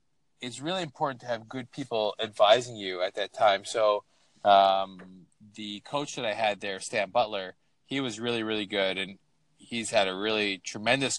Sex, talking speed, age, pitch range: male, 175 wpm, 20-39, 105-120 Hz